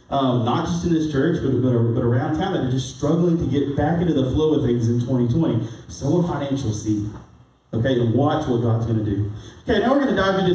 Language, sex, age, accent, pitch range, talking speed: English, male, 30-49, American, 115-170 Hz, 240 wpm